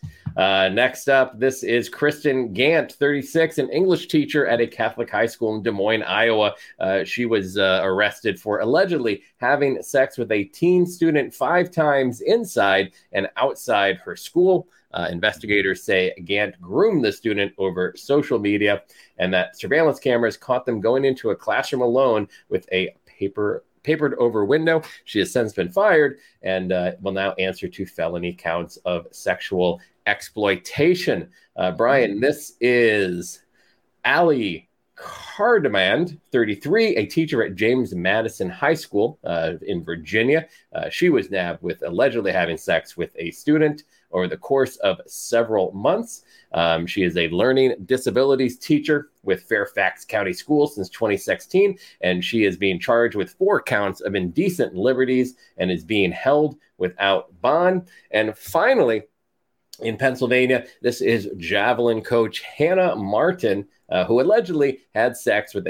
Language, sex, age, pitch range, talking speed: English, male, 30-49, 95-145 Hz, 150 wpm